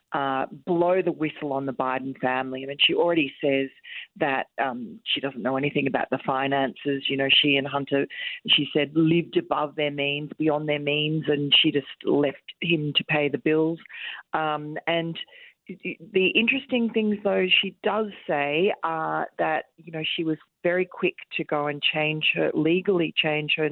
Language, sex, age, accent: English, female, 40-59, Australian